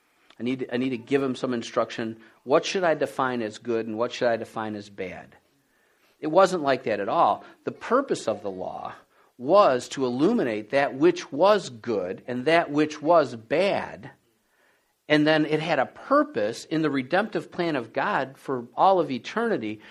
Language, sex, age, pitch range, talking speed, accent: English, male, 50-69, 125-180 Hz, 185 wpm, American